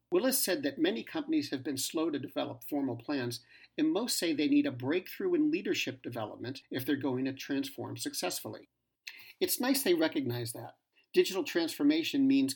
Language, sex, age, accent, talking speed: English, male, 50-69, American, 170 wpm